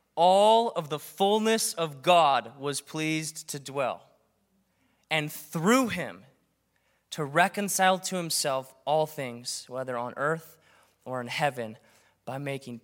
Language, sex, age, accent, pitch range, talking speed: English, male, 20-39, American, 140-175 Hz, 125 wpm